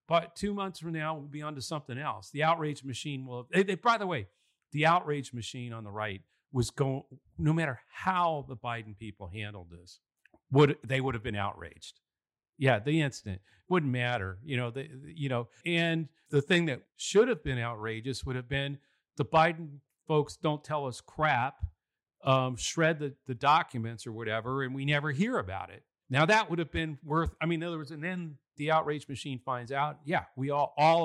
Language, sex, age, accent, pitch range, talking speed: English, male, 50-69, American, 120-150 Hz, 205 wpm